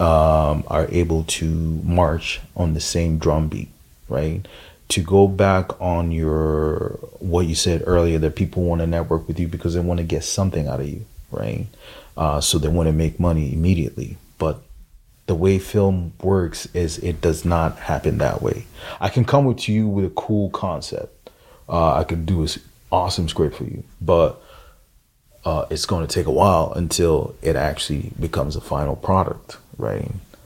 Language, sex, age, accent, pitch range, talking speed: English, male, 30-49, American, 80-95 Hz, 170 wpm